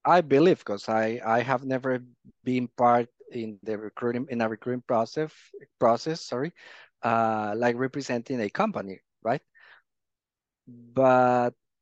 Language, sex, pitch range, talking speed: English, male, 115-140 Hz, 125 wpm